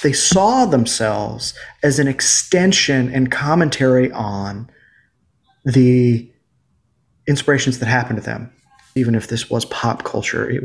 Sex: male